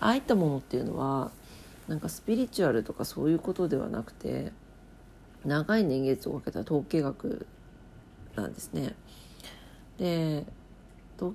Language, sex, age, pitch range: Japanese, female, 50-69, 135-185 Hz